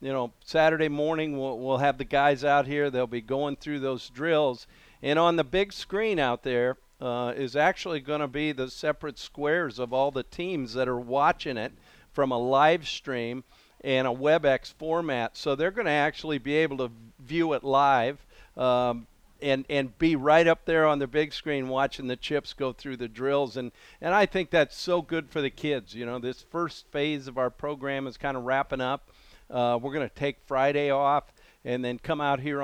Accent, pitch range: American, 125-150 Hz